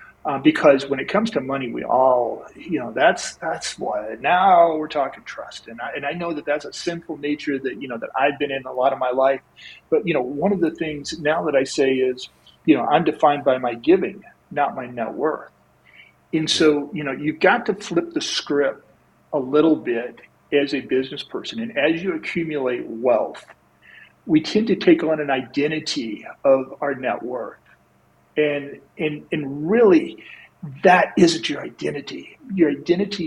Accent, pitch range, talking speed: American, 135-205 Hz, 190 wpm